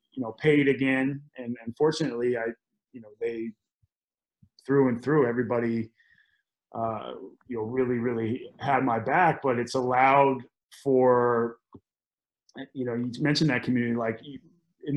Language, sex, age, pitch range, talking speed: English, male, 30-49, 120-140 Hz, 140 wpm